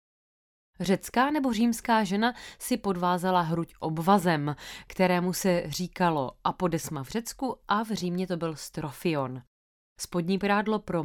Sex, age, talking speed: female, 20-39, 125 wpm